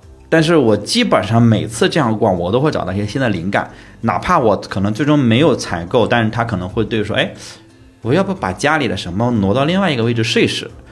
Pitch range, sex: 90-120 Hz, male